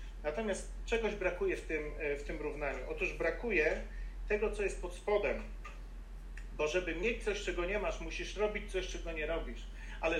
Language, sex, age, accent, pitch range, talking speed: Polish, male, 40-59, native, 170-210 Hz, 165 wpm